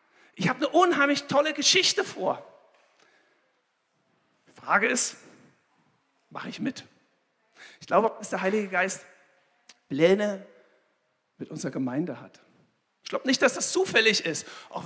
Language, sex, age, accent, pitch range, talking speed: German, male, 60-79, German, 170-245 Hz, 130 wpm